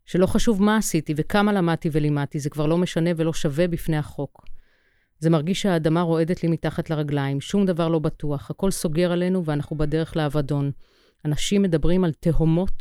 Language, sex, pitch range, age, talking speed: Hebrew, female, 150-180 Hz, 30-49, 170 wpm